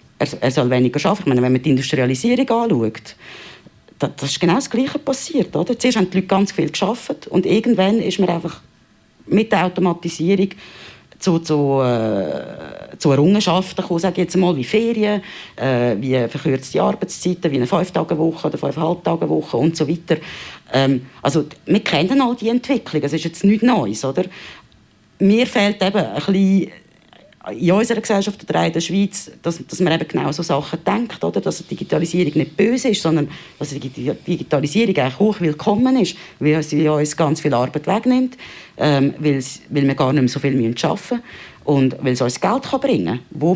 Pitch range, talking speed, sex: 145-200 Hz, 180 wpm, female